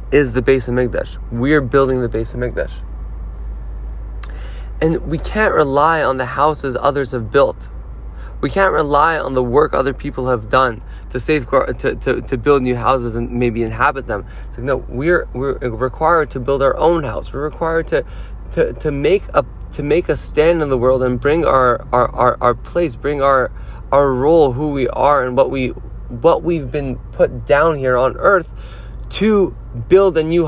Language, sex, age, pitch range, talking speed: English, male, 20-39, 120-150 Hz, 195 wpm